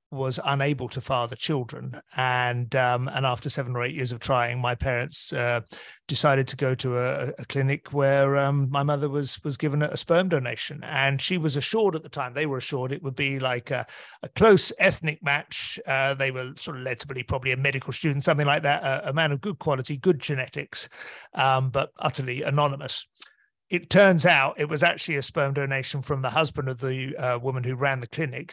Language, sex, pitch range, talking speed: English, male, 130-155 Hz, 215 wpm